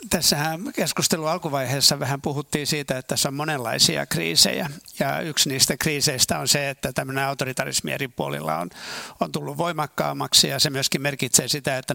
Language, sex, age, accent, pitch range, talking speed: Finnish, male, 60-79, native, 135-165 Hz, 160 wpm